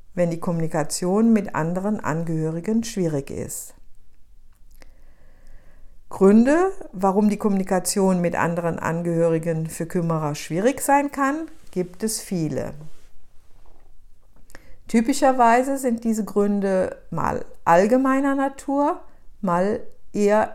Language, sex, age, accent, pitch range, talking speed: German, female, 60-79, German, 155-235 Hz, 95 wpm